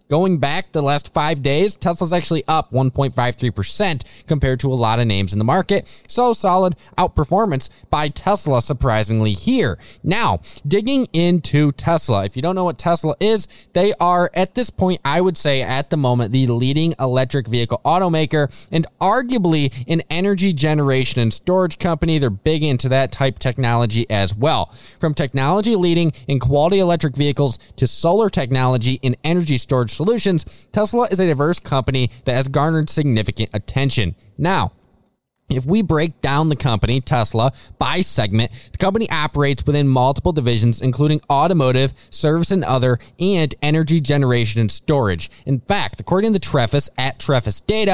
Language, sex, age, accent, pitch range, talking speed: English, male, 20-39, American, 125-175 Hz, 160 wpm